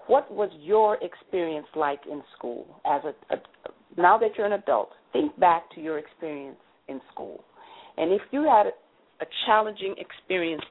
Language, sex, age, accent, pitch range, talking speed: English, female, 40-59, American, 150-205 Hz, 165 wpm